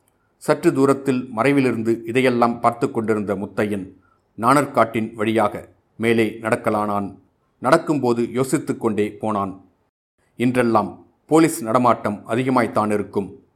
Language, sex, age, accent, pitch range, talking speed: Tamil, male, 40-59, native, 110-135 Hz, 85 wpm